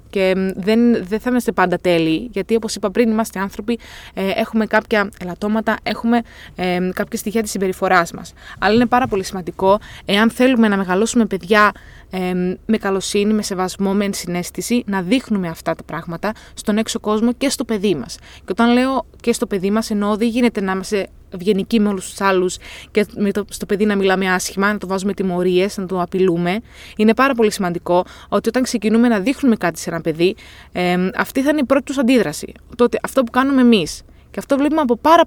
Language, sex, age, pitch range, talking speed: Greek, female, 20-39, 185-240 Hz, 190 wpm